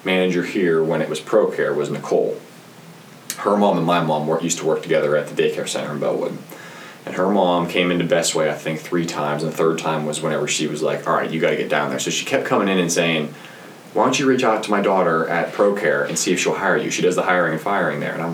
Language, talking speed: English, 265 wpm